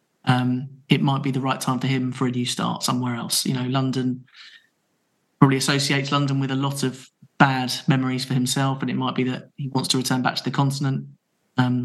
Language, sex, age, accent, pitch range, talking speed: English, male, 20-39, British, 130-140 Hz, 220 wpm